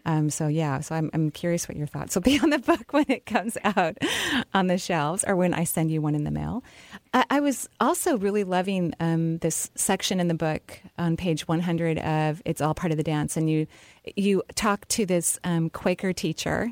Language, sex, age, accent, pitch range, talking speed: English, female, 30-49, American, 155-195 Hz, 225 wpm